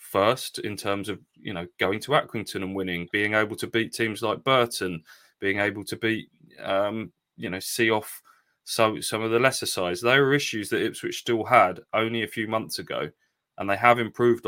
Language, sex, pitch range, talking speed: English, male, 100-115 Hz, 205 wpm